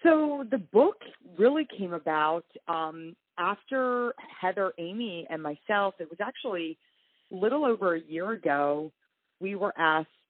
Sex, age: female, 40-59